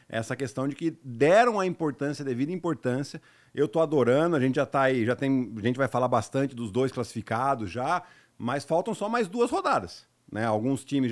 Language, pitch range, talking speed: Portuguese, 125-165 Hz, 205 wpm